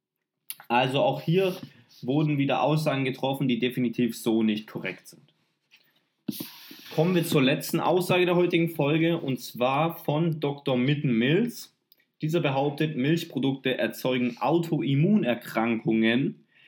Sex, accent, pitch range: male, German, 120-155 Hz